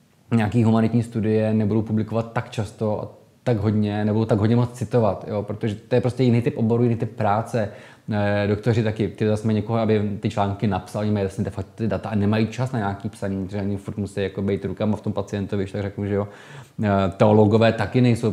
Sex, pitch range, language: male, 100-115 Hz, Czech